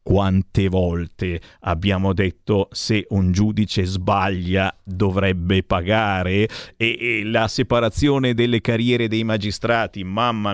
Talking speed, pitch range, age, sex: 110 wpm, 100-130 Hz, 50-69, male